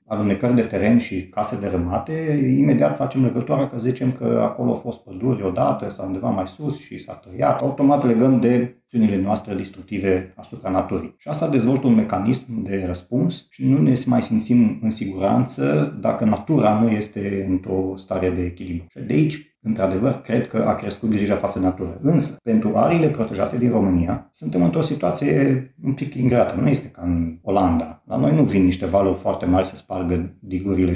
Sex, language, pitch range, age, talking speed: male, Romanian, 90-125 Hz, 40-59, 180 wpm